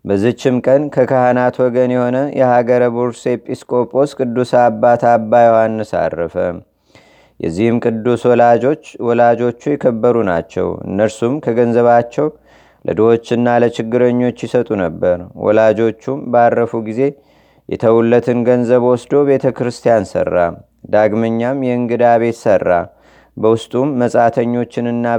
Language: Amharic